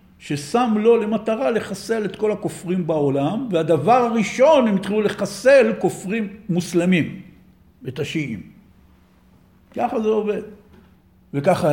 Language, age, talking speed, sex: Hebrew, 50-69, 105 wpm, male